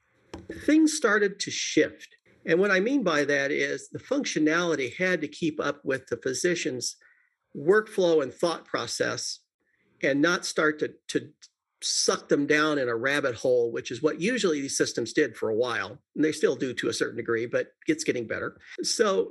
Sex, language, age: male, English, 50-69